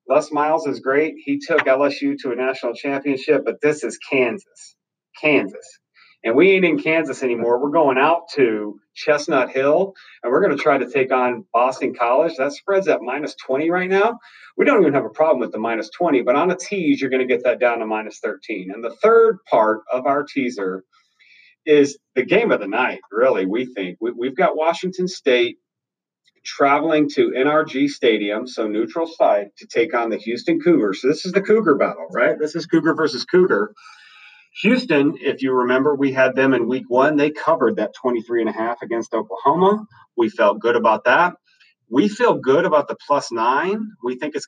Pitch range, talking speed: 130-190 Hz, 200 wpm